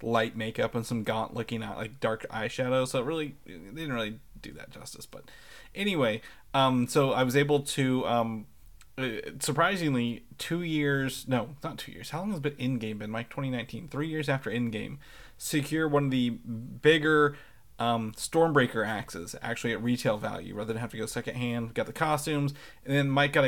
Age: 30-49